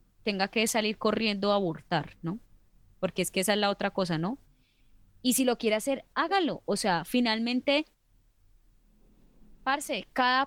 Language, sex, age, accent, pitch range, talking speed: Spanish, female, 10-29, Colombian, 185-235 Hz, 155 wpm